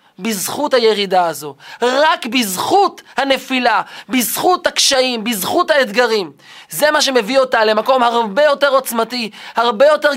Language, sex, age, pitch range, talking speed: Hebrew, male, 20-39, 200-265 Hz, 120 wpm